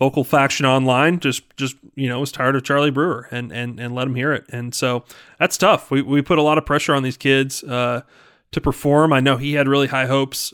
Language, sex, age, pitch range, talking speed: English, male, 20-39, 125-145 Hz, 245 wpm